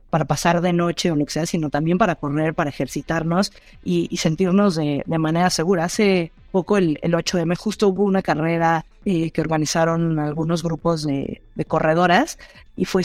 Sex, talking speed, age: female, 190 wpm, 30-49